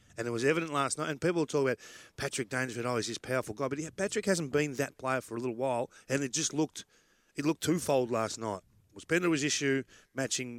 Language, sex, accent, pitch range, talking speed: English, male, Australian, 110-145 Hz, 240 wpm